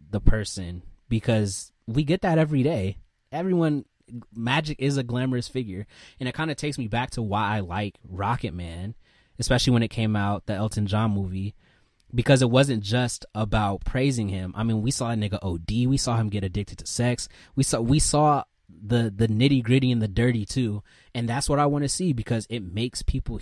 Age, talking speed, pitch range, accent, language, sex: 20-39, 200 wpm, 105-130 Hz, American, English, male